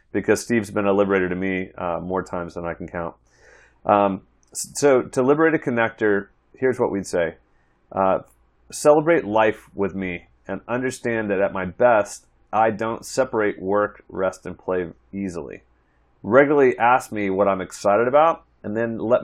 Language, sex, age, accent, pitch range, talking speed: English, male, 30-49, American, 85-110 Hz, 165 wpm